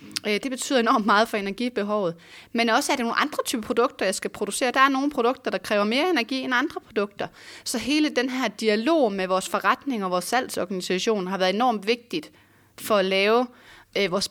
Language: Danish